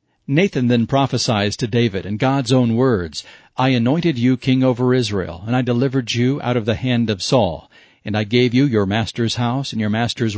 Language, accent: English, American